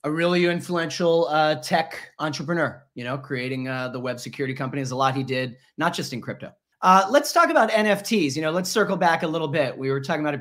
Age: 30-49